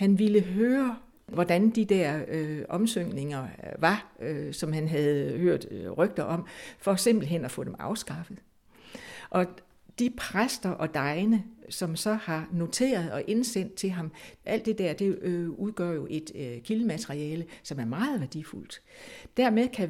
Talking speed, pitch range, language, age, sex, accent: 155 wpm, 170-225 Hz, Danish, 60-79, female, native